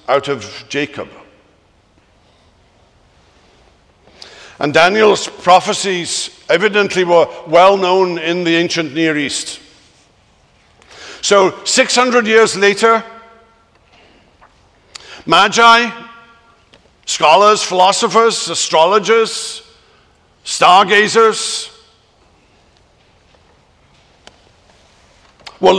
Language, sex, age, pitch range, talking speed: English, male, 60-79, 155-225 Hz, 60 wpm